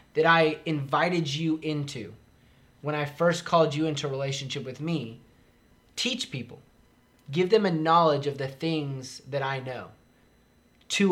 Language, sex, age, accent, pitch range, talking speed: English, male, 20-39, American, 130-170 Hz, 145 wpm